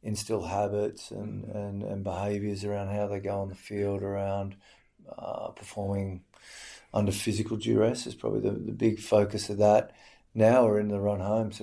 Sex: male